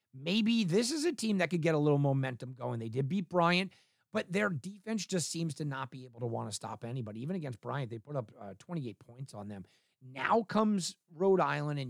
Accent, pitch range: American, 130-205 Hz